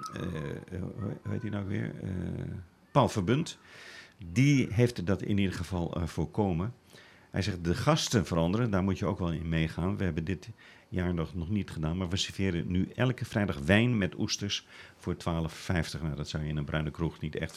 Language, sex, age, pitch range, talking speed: Dutch, male, 50-69, 85-110 Hz, 195 wpm